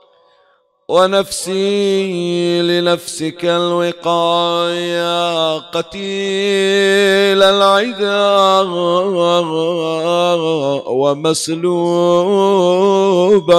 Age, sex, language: 50-69, male, Arabic